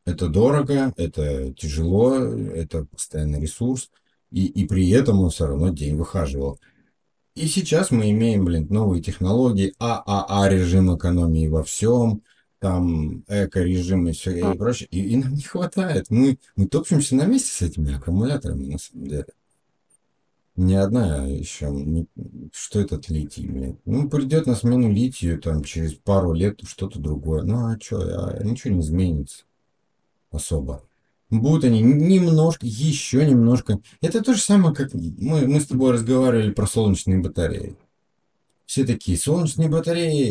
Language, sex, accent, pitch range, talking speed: Russian, male, native, 85-130 Hz, 145 wpm